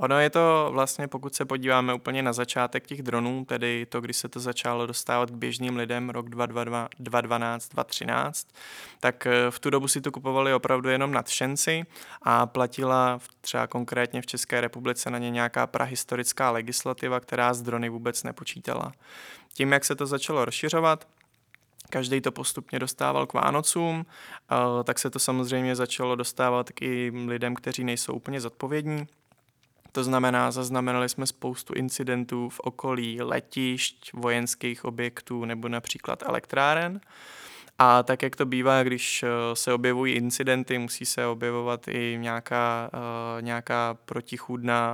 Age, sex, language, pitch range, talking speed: 20-39, male, Czech, 120-130 Hz, 140 wpm